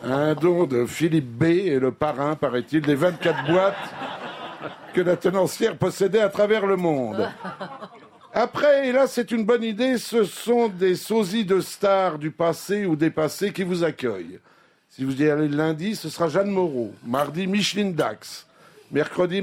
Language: French